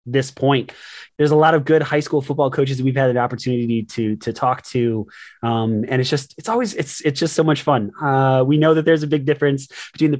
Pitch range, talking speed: 130-170 Hz, 245 wpm